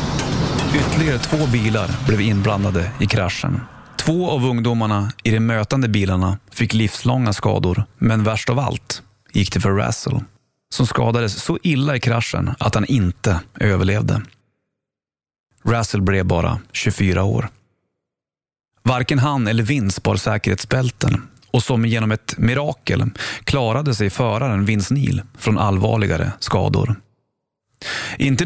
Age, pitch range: 30-49, 105-125 Hz